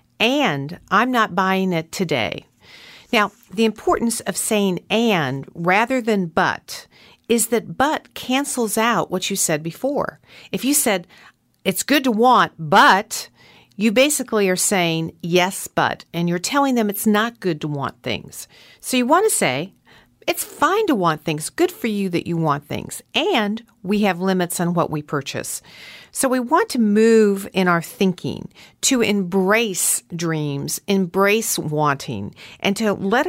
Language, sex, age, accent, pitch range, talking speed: English, female, 50-69, American, 170-235 Hz, 160 wpm